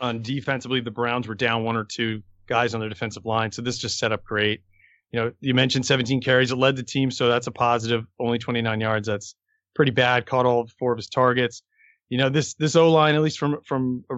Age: 30-49